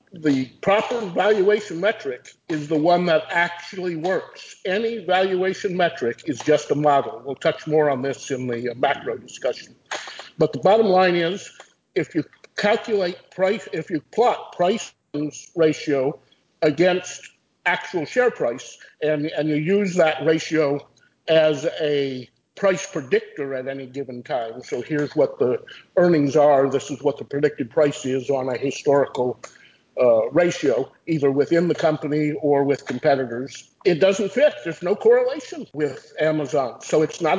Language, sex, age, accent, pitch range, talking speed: English, male, 50-69, American, 140-185 Hz, 150 wpm